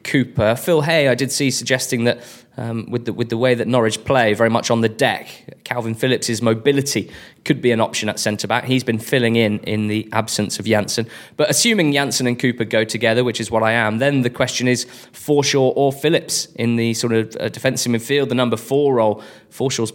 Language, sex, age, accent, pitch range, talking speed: English, male, 20-39, British, 110-130 Hz, 215 wpm